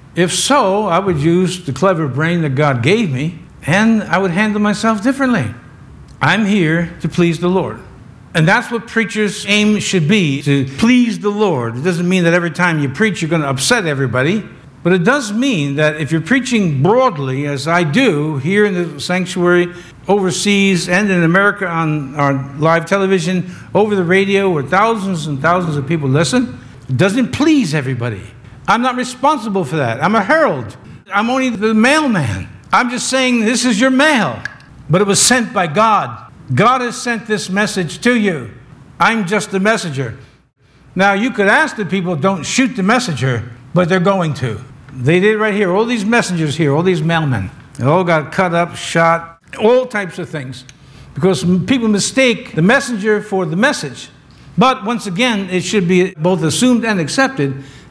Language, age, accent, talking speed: English, 60-79, American, 180 wpm